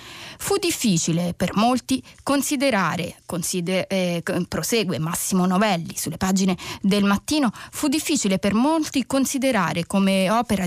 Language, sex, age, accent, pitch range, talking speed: Italian, female, 20-39, native, 180-250 Hz, 120 wpm